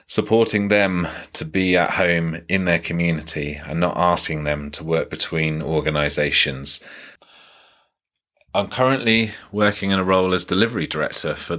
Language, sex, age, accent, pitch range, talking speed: English, male, 30-49, British, 80-100 Hz, 140 wpm